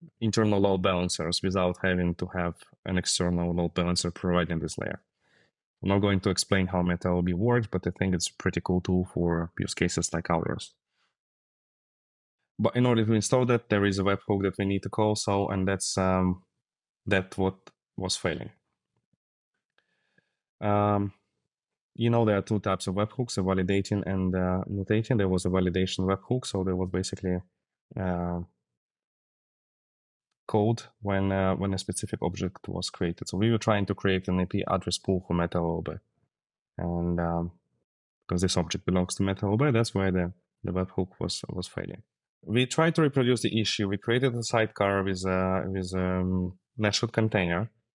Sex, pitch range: male, 90-105 Hz